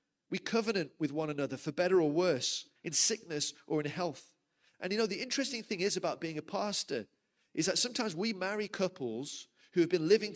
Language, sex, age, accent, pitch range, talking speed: English, male, 30-49, British, 155-215 Hz, 205 wpm